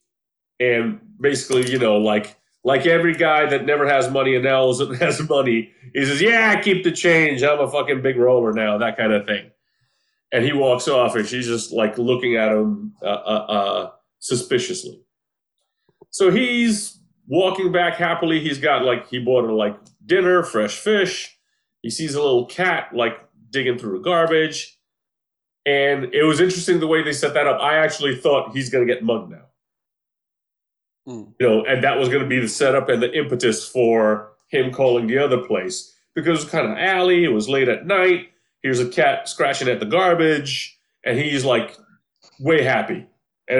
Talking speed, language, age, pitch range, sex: 185 wpm, English, 30-49, 125-180 Hz, male